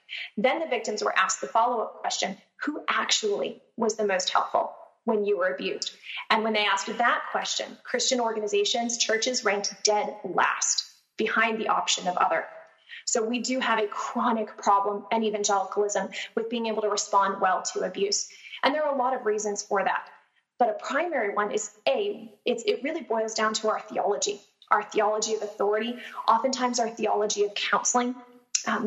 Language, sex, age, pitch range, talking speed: English, female, 20-39, 210-240 Hz, 175 wpm